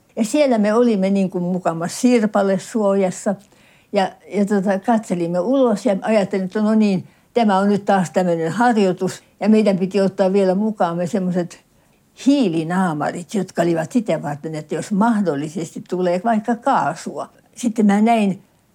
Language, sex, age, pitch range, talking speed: Finnish, female, 60-79, 175-225 Hz, 145 wpm